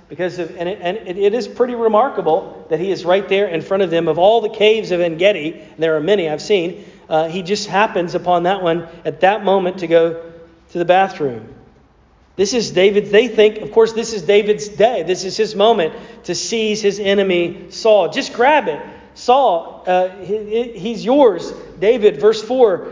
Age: 40-59